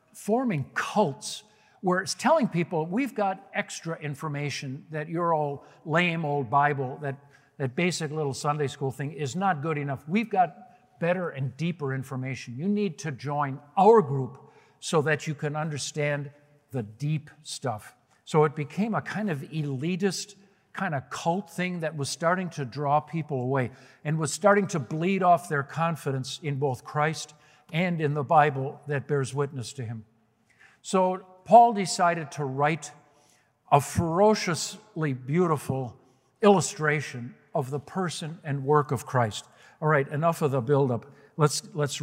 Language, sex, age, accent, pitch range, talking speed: English, male, 60-79, American, 140-180 Hz, 155 wpm